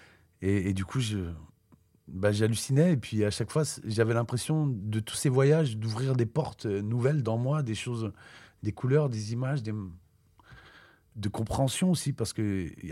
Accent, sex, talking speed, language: French, male, 170 wpm, French